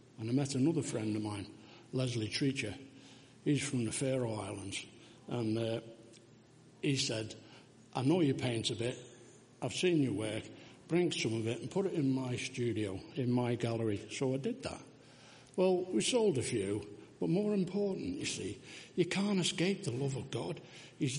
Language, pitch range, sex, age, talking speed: English, 125-180 Hz, male, 60-79, 180 wpm